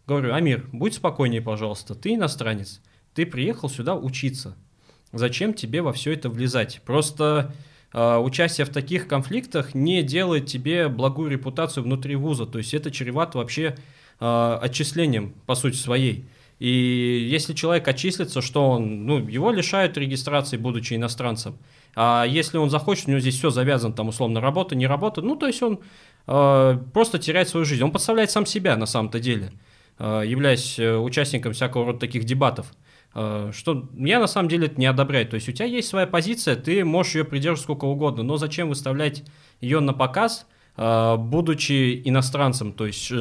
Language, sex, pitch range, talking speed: Russian, male, 120-160 Hz, 165 wpm